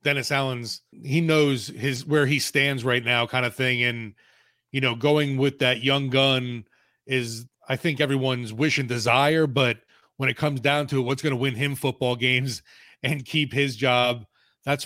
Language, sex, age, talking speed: English, male, 30-49, 190 wpm